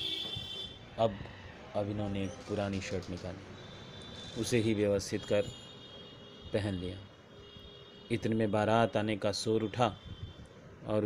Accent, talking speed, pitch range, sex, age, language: native, 115 wpm, 100-115 Hz, male, 30-49, Hindi